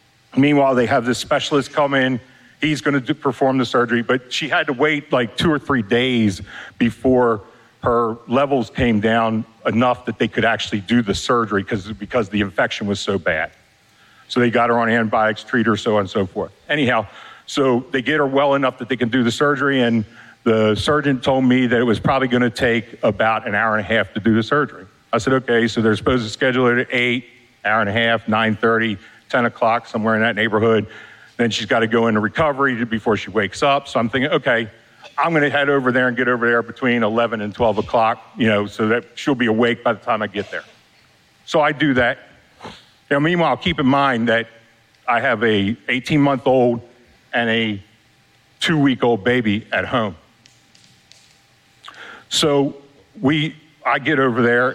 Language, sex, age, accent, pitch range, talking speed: English, male, 50-69, American, 115-130 Hz, 200 wpm